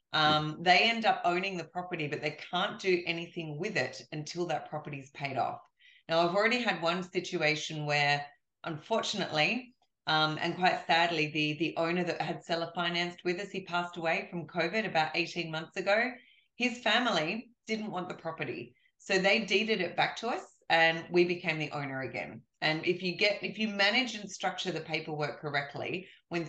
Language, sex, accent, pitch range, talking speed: English, female, Australian, 155-195 Hz, 185 wpm